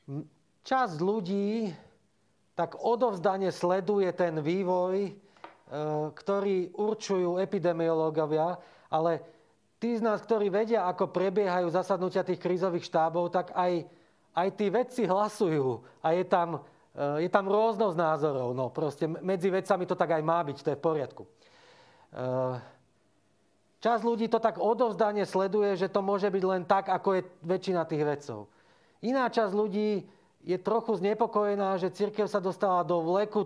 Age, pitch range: 40-59, 165-200 Hz